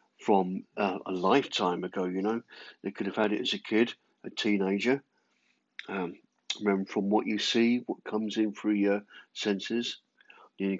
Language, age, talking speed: English, 50-69, 165 wpm